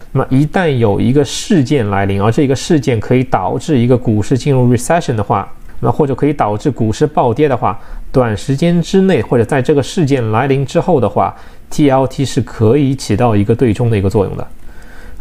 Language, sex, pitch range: Chinese, male, 115-155 Hz